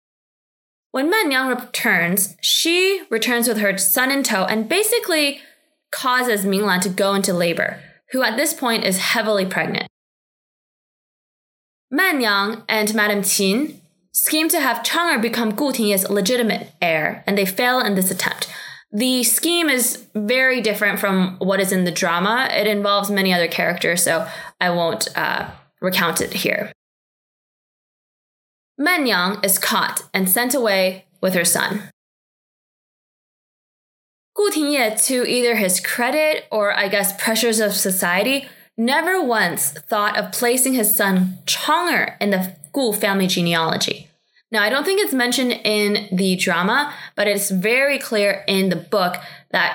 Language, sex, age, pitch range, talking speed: English, female, 20-39, 195-255 Hz, 145 wpm